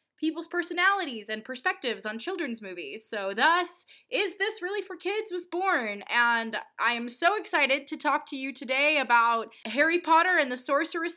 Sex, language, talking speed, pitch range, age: female, English, 170 wpm, 205-290 Hz, 20-39